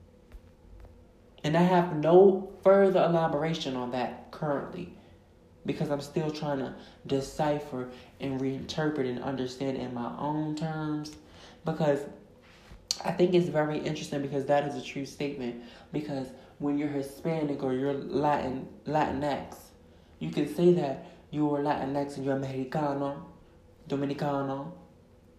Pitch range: 125-155 Hz